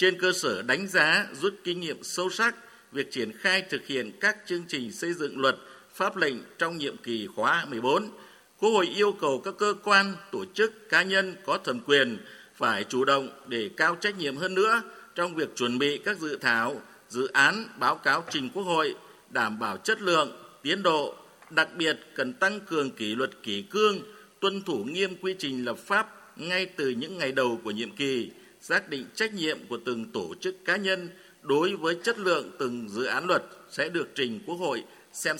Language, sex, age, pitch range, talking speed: Vietnamese, male, 50-69, 145-200 Hz, 200 wpm